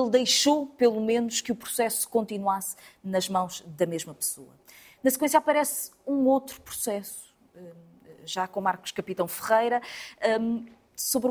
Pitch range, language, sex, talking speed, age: 200-260 Hz, Portuguese, female, 135 wpm, 20-39